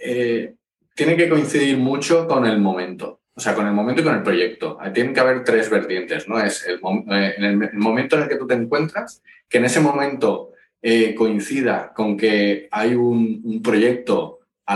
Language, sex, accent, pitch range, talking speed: Spanish, male, Spanish, 100-130 Hz, 190 wpm